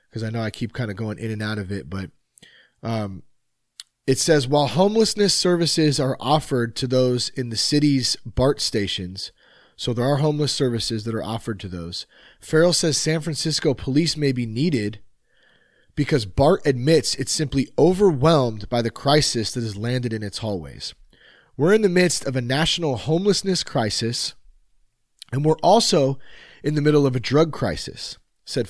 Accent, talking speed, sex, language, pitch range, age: American, 170 wpm, male, English, 115-155 Hz, 30-49